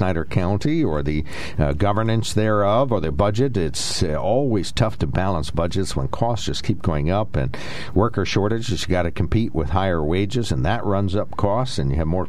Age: 60-79